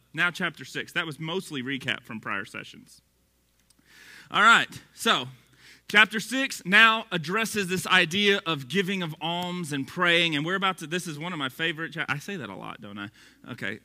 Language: English